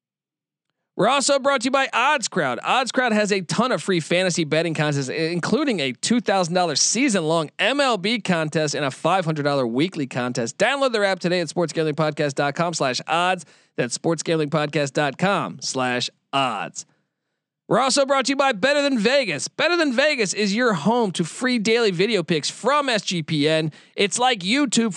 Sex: male